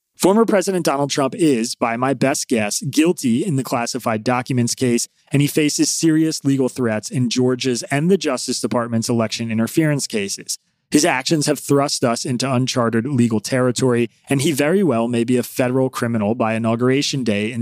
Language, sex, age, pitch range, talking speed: English, male, 30-49, 115-150 Hz, 175 wpm